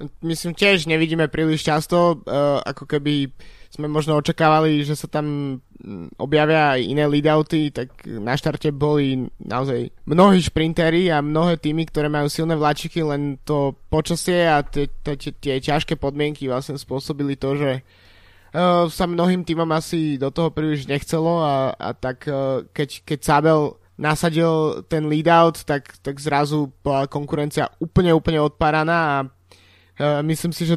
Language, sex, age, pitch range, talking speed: Slovak, male, 20-39, 130-155 Hz, 135 wpm